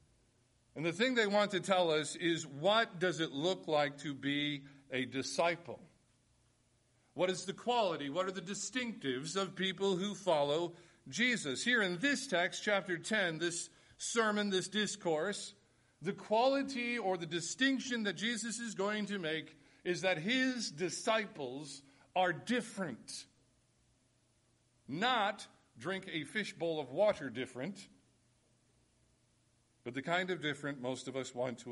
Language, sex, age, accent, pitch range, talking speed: English, male, 50-69, American, 135-195 Hz, 140 wpm